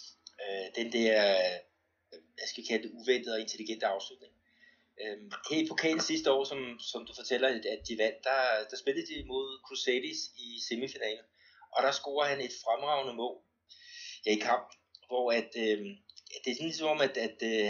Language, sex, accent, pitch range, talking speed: Danish, male, native, 105-165 Hz, 165 wpm